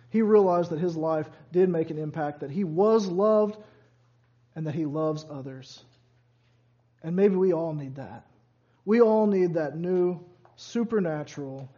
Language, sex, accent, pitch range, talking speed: English, male, American, 150-210 Hz, 155 wpm